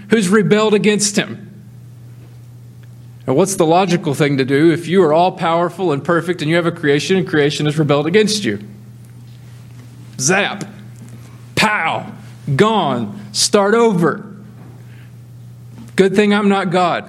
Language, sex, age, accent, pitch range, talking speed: English, male, 40-59, American, 145-210 Hz, 135 wpm